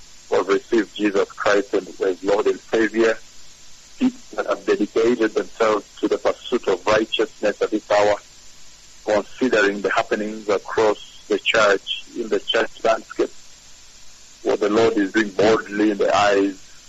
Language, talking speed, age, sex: English, 140 wpm, 50-69, male